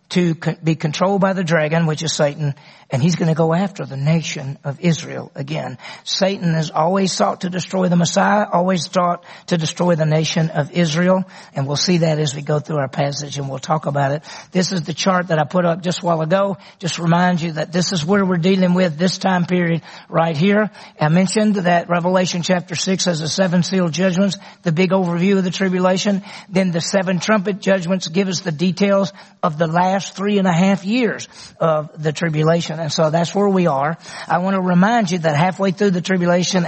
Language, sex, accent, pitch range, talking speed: English, male, American, 160-190 Hz, 215 wpm